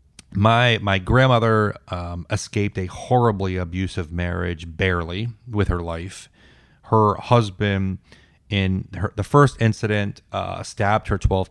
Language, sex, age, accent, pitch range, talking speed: English, male, 30-49, American, 90-105 Hz, 125 wpm